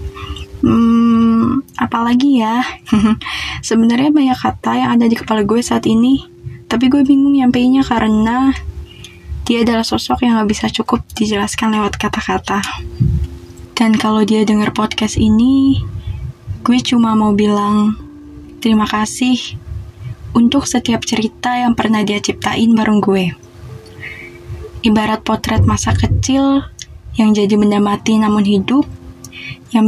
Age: 20-39